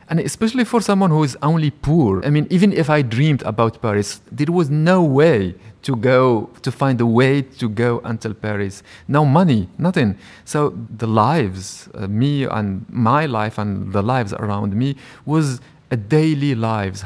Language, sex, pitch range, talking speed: Dutch, male, 110-145 Hz, 175 wpm